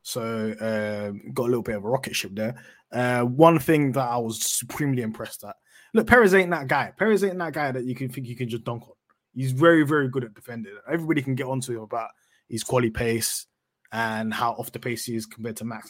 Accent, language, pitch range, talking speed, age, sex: British, English, 115-140 Hz, 240 wpm, 20-39, male